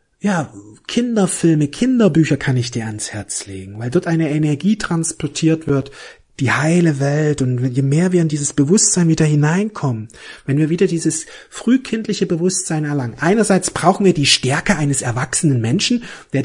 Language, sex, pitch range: German, male, 150-200 Hz